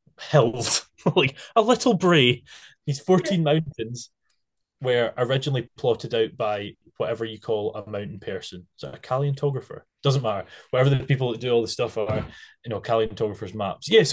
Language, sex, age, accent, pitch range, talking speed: English, male, 10-29, British, 110-145 Hz, 160 wpm